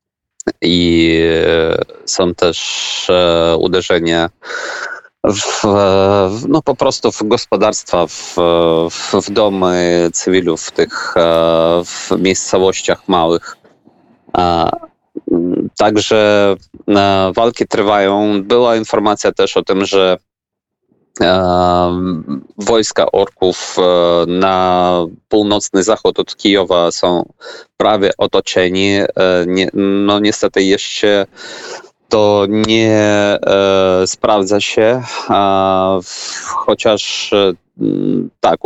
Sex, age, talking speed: male, 30-49, 85 wpm